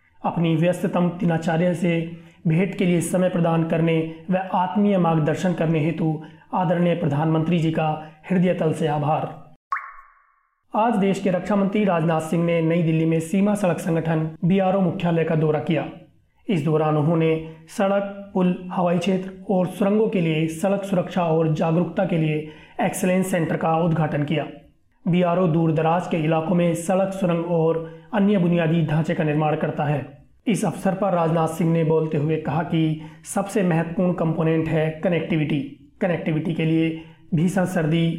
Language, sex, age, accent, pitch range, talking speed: Hindi, male, 30-49, native, 160-185 Hz, 150 wpm